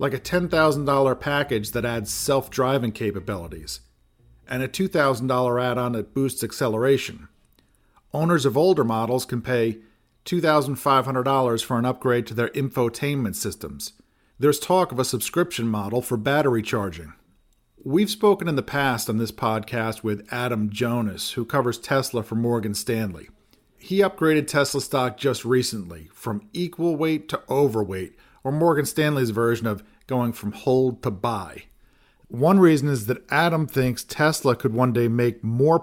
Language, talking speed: English, 145 wpm